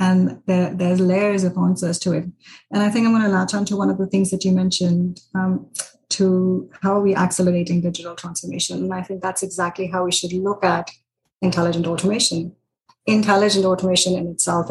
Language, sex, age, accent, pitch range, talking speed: English, female, 30-49, Indian, 180-200 Hz, 195 wpm